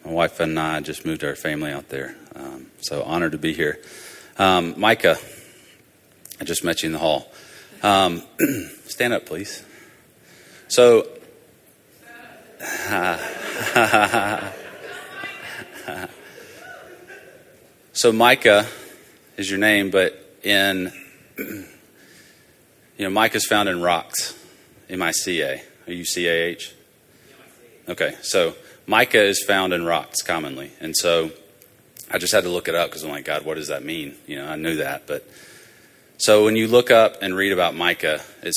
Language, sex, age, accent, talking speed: English, male, 30-49, American, 145 wpm